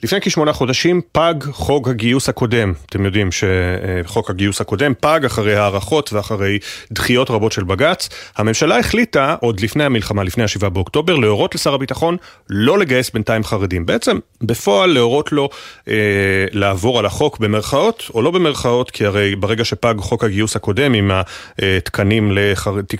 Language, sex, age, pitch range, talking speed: Hebrew, male, 30-49, 105-140 Hz, 150 wpm